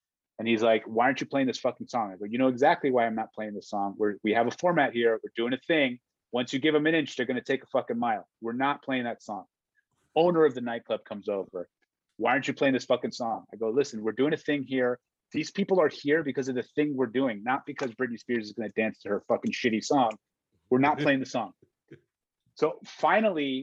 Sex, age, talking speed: male, 30-49, 250 wpm